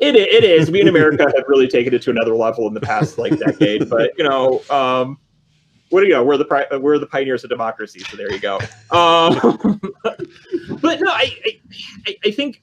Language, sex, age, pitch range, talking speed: English, male, 30-49, 130-210 Hz, 210 wpm